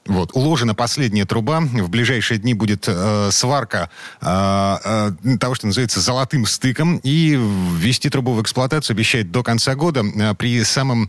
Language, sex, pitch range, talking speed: Russian, male, 100-130 Hz, 145 wpm